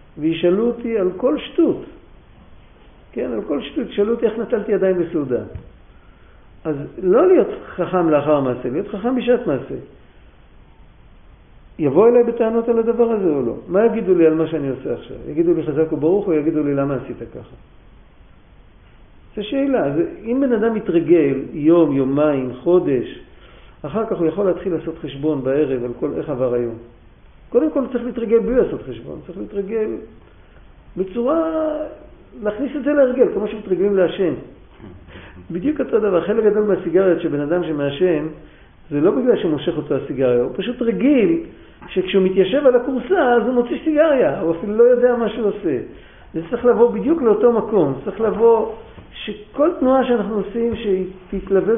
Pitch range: 160-240 Hz